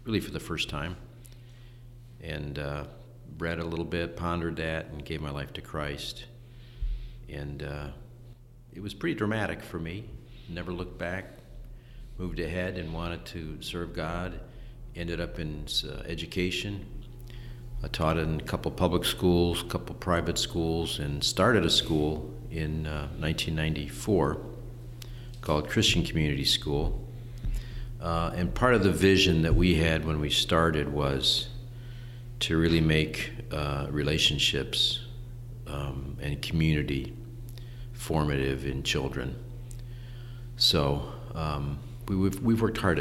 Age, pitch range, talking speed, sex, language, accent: 50-69, 80-120 Hz, 130 wpm, male, English, American